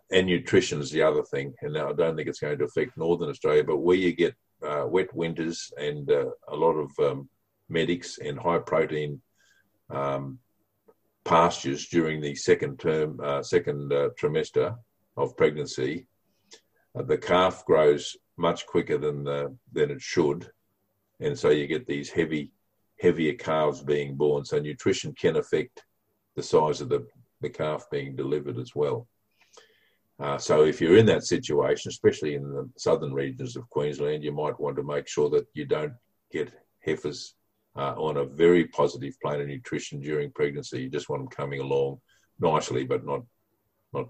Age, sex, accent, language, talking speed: 50-69, male, Australian, English, 170 wpm